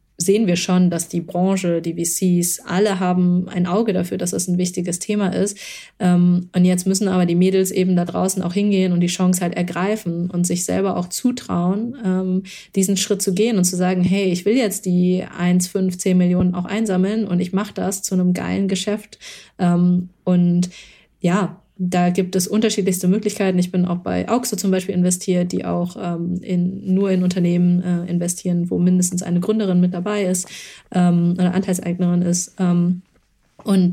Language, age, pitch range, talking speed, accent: German, 20-39, 180-195 Hz, 180 wpm, German